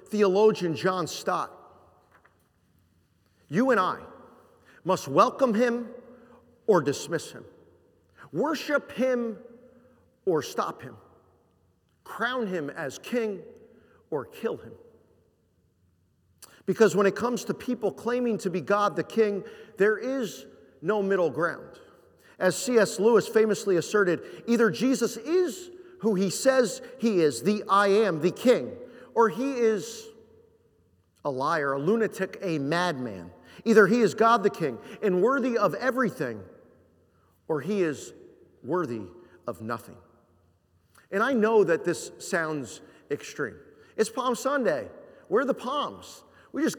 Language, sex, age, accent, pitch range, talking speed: English, male, 50-69, American, 160-245 Hz, 125 wpm